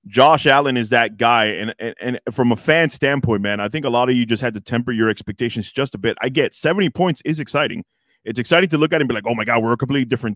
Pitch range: 115-145 Hz